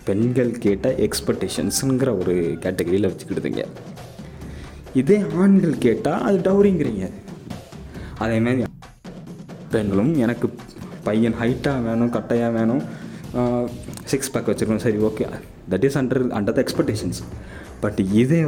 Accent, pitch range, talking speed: native, 95-125 Hz, 105 wpm